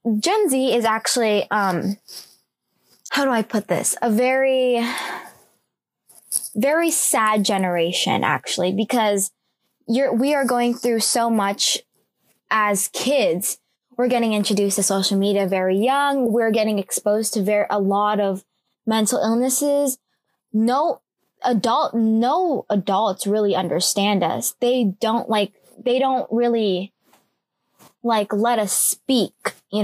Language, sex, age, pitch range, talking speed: English, female, 10-29, 200-245 Hz, 120 wpm